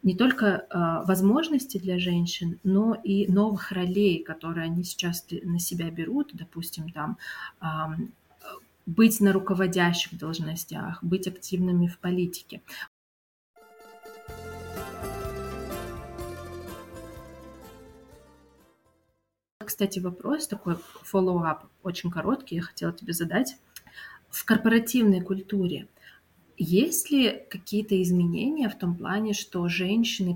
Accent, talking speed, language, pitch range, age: native, 95 wpm, Russian, 170-210 Hz, 30-49